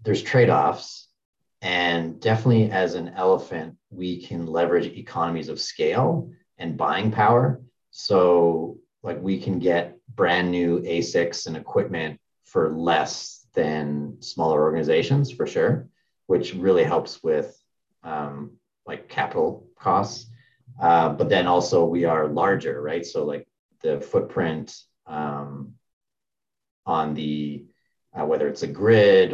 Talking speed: 125 wpm